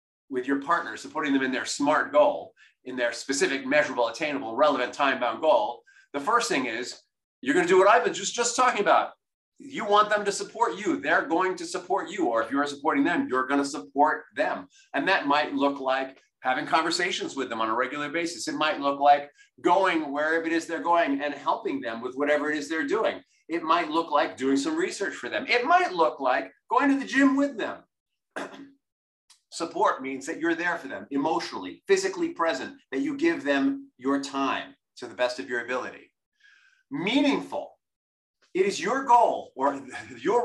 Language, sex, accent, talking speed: English, male, American, 195 wpm